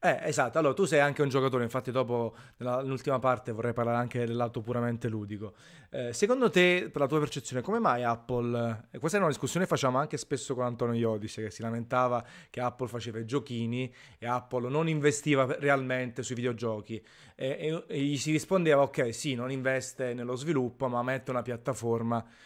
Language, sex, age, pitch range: Italian, male, 30-49, 120-140 Hz